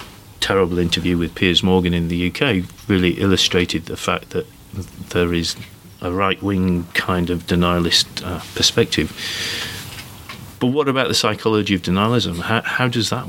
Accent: British